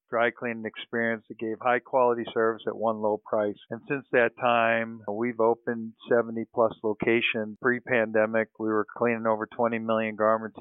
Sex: male